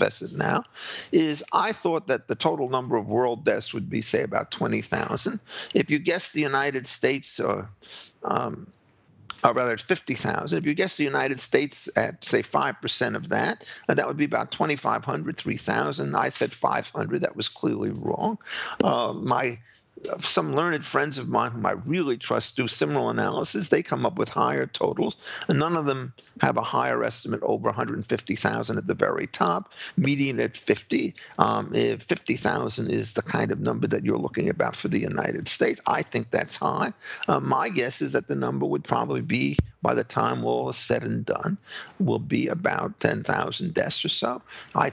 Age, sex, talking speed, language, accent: 50-69, male, 180 wpm, English, American